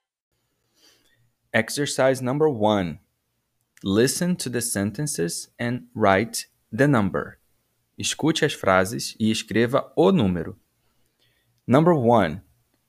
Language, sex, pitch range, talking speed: English, male, 110-140 Hz, 95 wpm